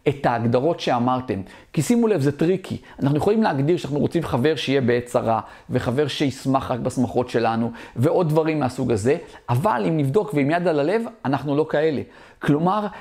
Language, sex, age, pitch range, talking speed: Hebrew, male, 40-59, 120-155 Hz, 170 wpm